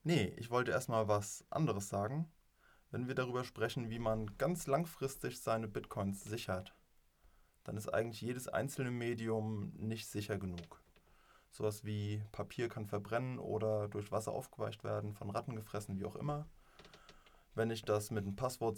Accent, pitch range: German, 105-125 Hz